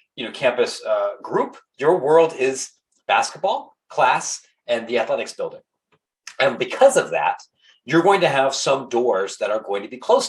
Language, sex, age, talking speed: English, male, 40-59, 175 wpm